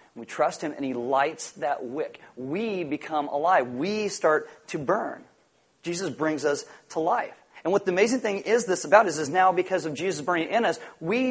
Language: English